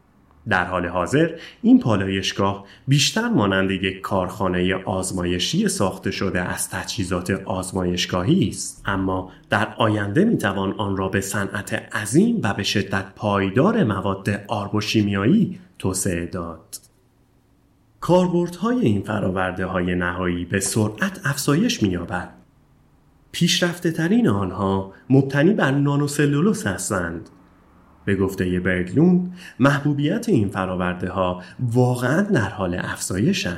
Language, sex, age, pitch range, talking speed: Persian, male, 30-49, 90-130 Hz, 110 wpm